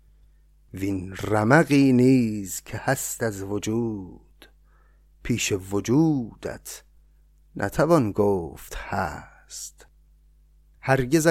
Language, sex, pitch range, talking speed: Persian, male, 100-140 Hz, 70 wpm